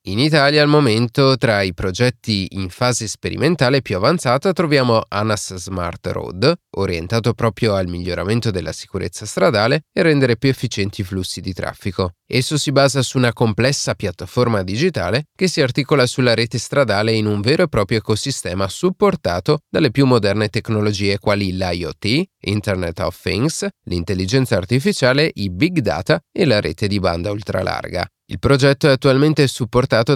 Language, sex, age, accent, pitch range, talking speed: Italian, male, 30-49, native, 100-140 Hz, 155 wpm